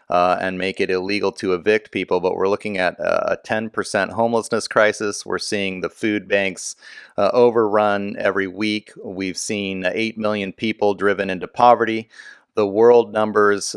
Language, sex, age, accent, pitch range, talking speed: English, male, 30-49, American, 95-110 Hz, 160 wpm